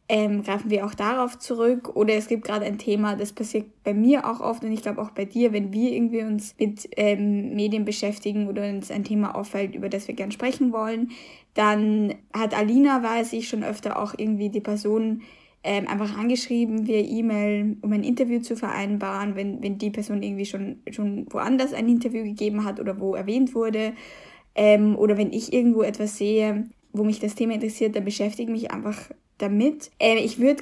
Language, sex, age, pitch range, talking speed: German, female, 10-29, 210-235 Hz, 195 wpm